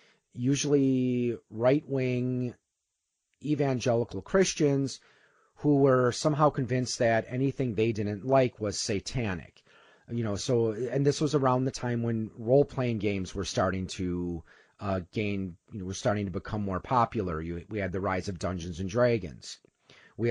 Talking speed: 150 wpm